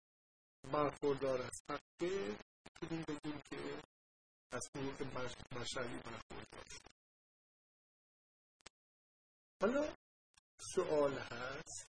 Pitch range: 125-160 Hz